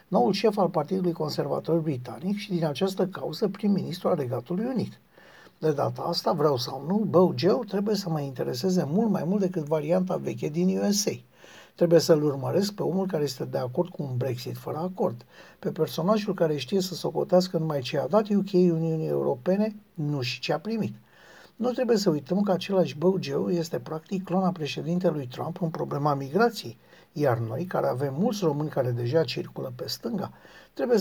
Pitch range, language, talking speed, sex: 160-200 Hz, Romanian, 180 wpm, male